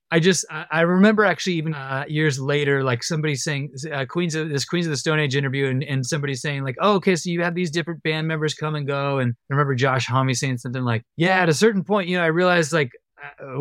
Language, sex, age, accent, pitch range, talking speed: English, male, 30-49, American, 140-175 Hz, 255 wpm